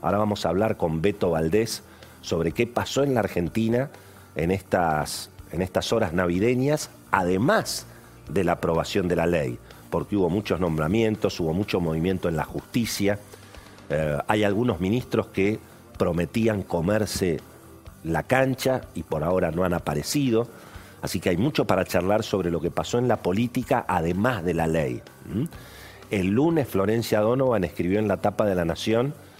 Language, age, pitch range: Spanish, 40-59, 90-115 Hz